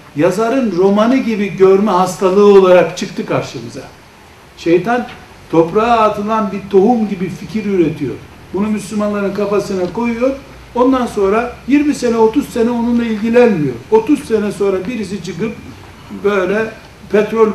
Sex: male